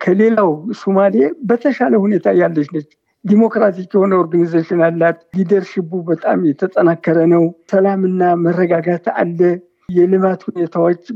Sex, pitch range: male, 180-225 Hz